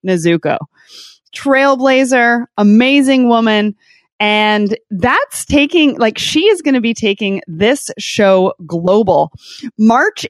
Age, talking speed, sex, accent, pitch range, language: 20-39, 105 wpm, female, American, 200-280 Hz, English